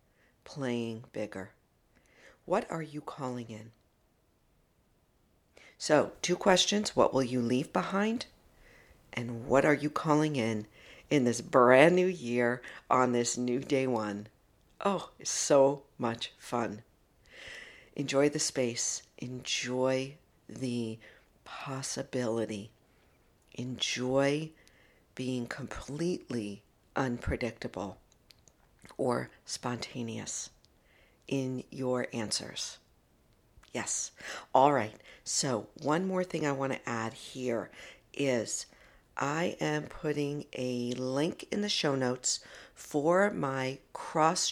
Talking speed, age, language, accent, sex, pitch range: 100 wpm, 60-79, English, American, female, 120-150 Hz